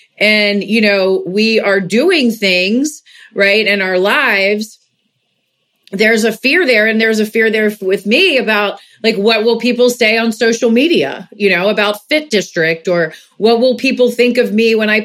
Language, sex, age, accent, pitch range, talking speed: English, female, 40-59, American, 195-240 Hz, 180 wpm